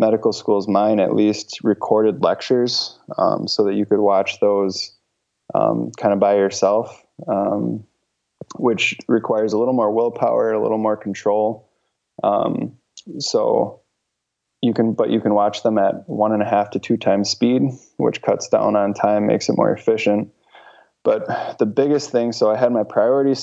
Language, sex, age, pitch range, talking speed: English, male, 20-39, 95-110 Hz, 170 wpm